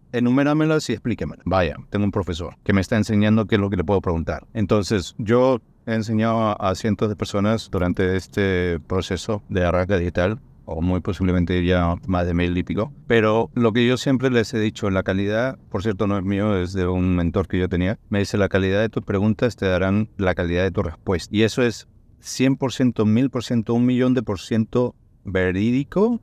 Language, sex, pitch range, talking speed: Spanish, male, 95-125 Hz, 205 wpm